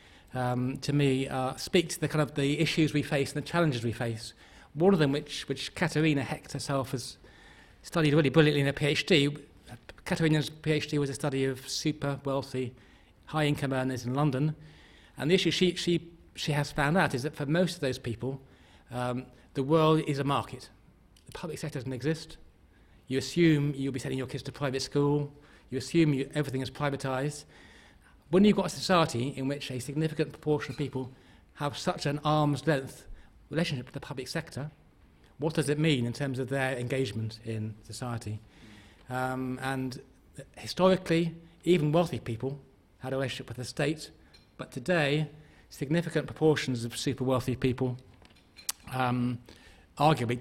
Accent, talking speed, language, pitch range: British, 170 wpm, English, 125-150 Hz